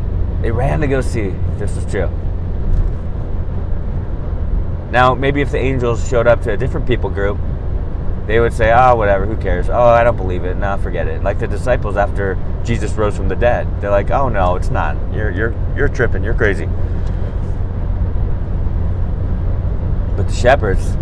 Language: English